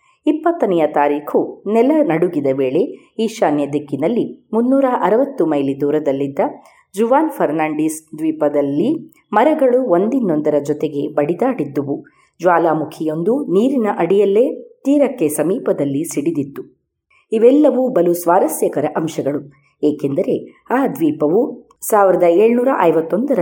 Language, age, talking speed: Kannada, 30-49, 80 wpm